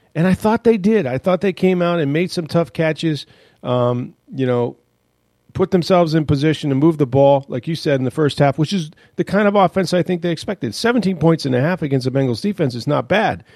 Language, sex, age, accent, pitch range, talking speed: English, male, 40-59, American, 125-175 Hz, 245 wpm